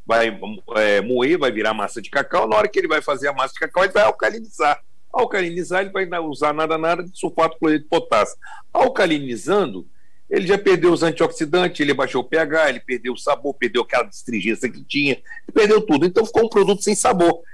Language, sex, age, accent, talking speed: Portuguese, male, 60-79, Brazilian, 210 wpm